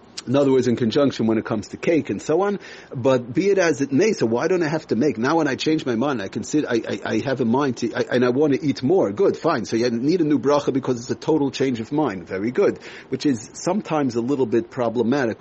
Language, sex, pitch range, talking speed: English, male, 115-155 Hz, 280 wpm